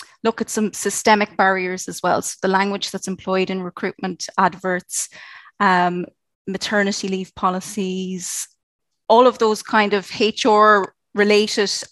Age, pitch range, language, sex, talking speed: 30-49, 185-215 Hz, English, female, 130 wpm